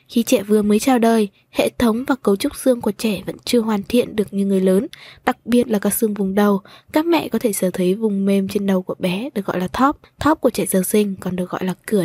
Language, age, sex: Vietnamese, 20-39, female